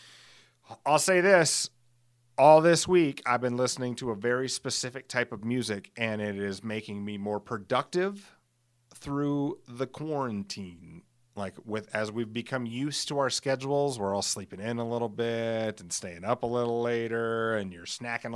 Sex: male